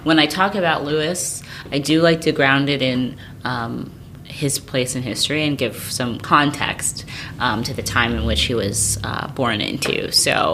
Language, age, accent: English, 30-49, American